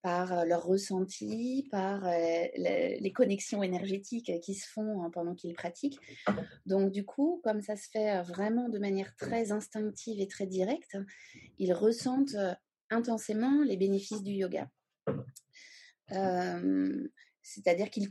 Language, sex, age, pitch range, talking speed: French, female, 30-49, 185-225 Hz, 135 wpm